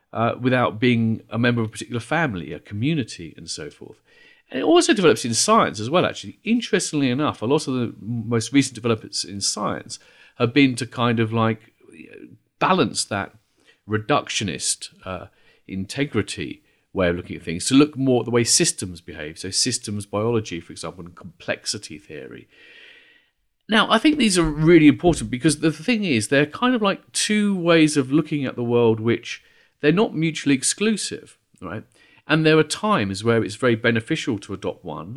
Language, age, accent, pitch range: English, 40-59, British, 105-155 Hz